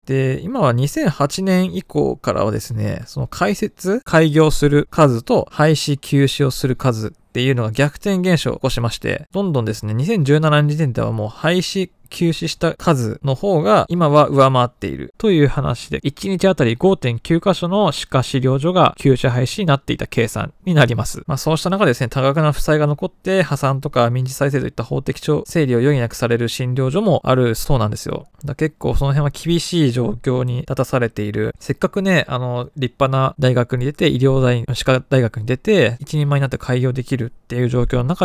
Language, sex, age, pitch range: Japanese, male, 20-39, 125-170 Hz